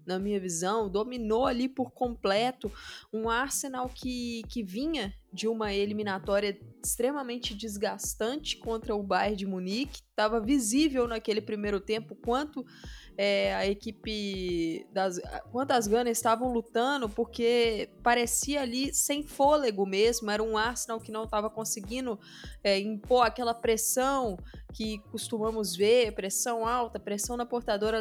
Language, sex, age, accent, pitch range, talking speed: Portuguese, female, 20-39, Brazilian, 215-270 Hz, 130 wpm